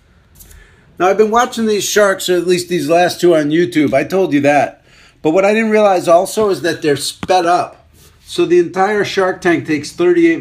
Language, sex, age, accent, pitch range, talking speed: English, male, 50-69, American, 140-185 Hz, 210 wpm